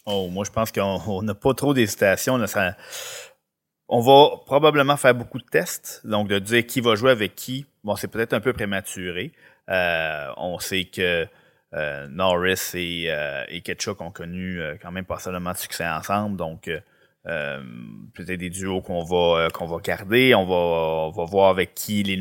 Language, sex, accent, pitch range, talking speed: French, male, Canadian, 90-105 Hz, 190 wpm